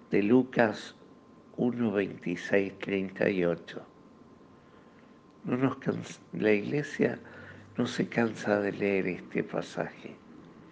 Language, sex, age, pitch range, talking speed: Spanish, male, 60-79, 95-115 Hz, 80 wpm